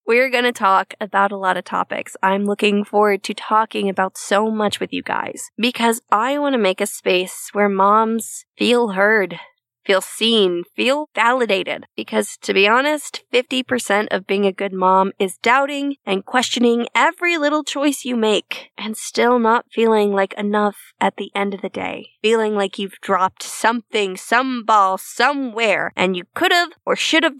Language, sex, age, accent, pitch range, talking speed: English, female, 20-39, American, 200-250 Hz, 170 wpm